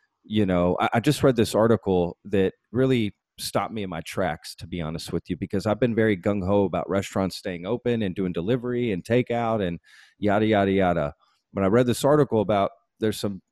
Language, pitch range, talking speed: English, 95-120 Hz, 200 wpm